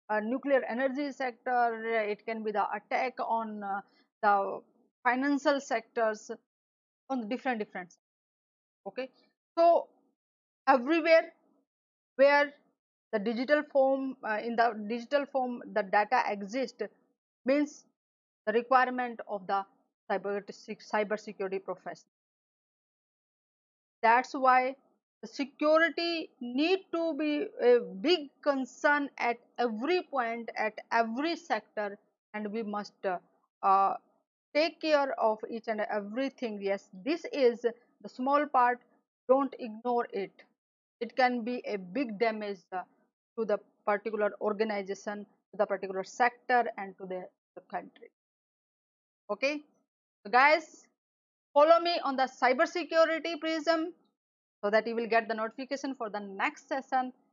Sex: female